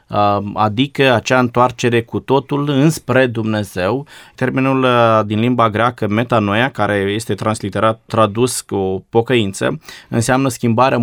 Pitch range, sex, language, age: 110-130 Hz, male, Romanian, 20-39